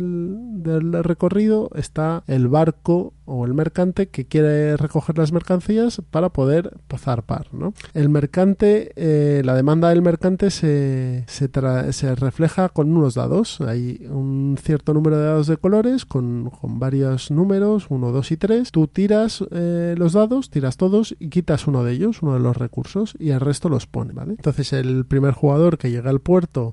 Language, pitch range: Spanish, 135-175 Hz